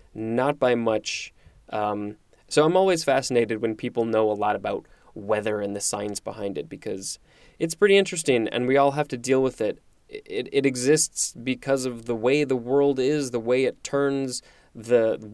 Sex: male